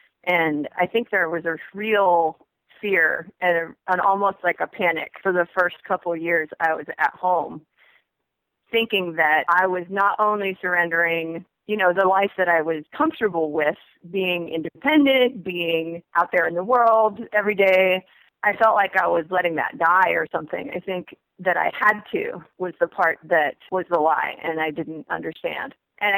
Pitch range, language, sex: 170-195 Hz, English, female